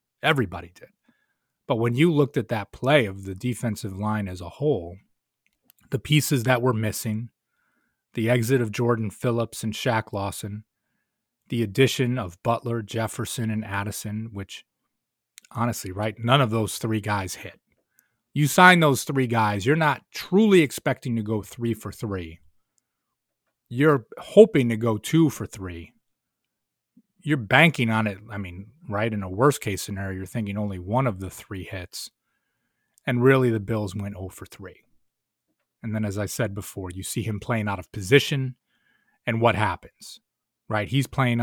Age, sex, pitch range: 30-49, male, 105-130 Hz